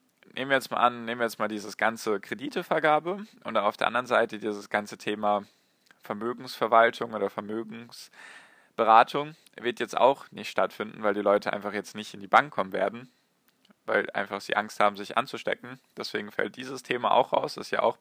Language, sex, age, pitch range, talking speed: German, male, 10-29, 105-130 Hz, 185 wpm